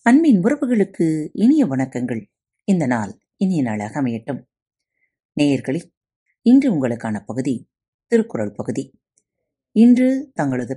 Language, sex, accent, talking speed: Tamil, female, native, 95 wpm